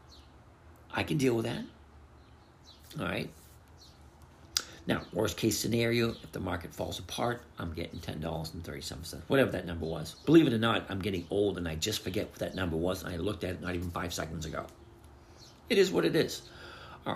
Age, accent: 50-69, American